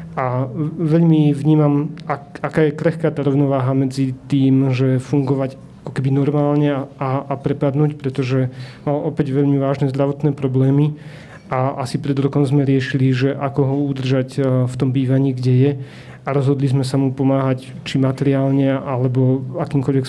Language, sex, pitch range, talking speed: Slovak, male, 135-145 Hz, 150 wpm